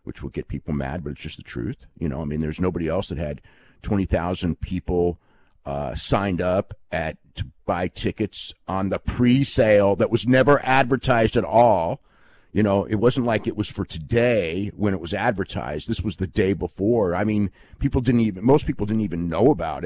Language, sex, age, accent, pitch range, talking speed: English, male, 50-69, American, 85-110 Hz, 200 wpm